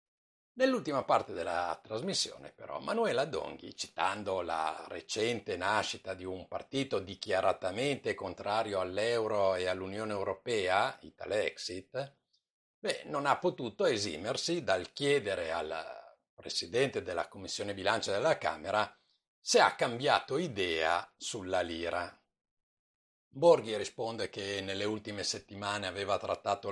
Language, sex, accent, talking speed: Italian, male, native, 110 wpm